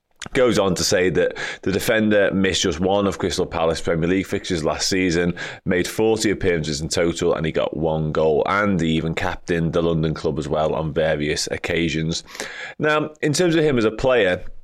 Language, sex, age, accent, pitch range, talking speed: English, male, 20-39, British, 85-105 Hz, 195 wpm